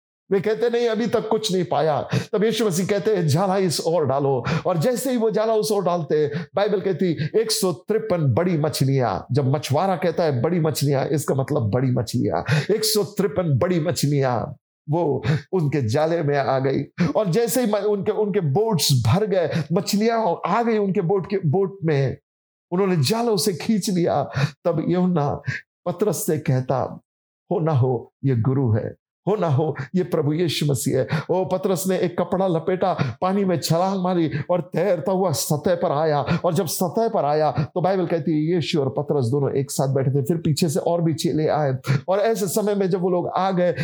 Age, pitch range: 50-69, 145-195 Hz